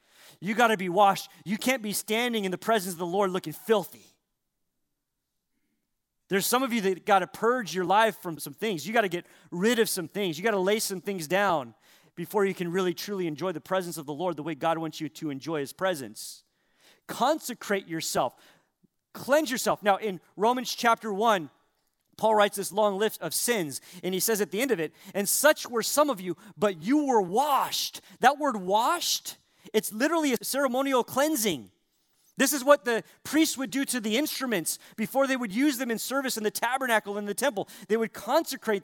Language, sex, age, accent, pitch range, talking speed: English, male, 40-59, American, 185-240 Hz, 200 wpm